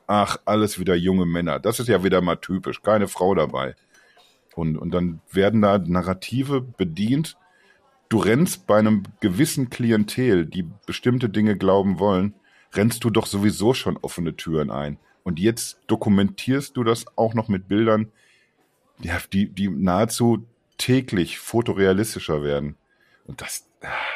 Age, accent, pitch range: 50-69, German, 95-115 Hz